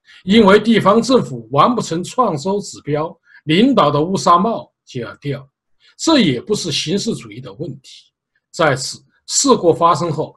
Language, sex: Chinese, male